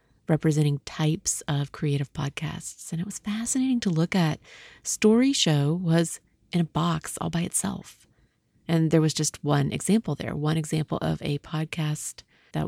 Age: 30-49